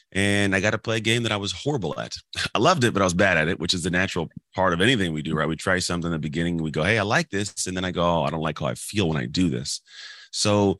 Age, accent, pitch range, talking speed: 30-49, American, 80-95 Hz, 330 wpm